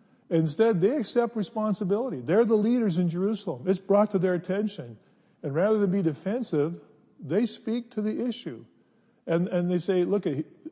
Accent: American